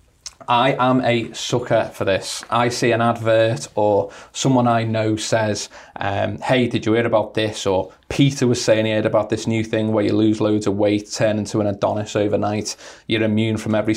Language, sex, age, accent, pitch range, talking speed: English, male, 20-39, British, 100-115 Hz, 200 wpm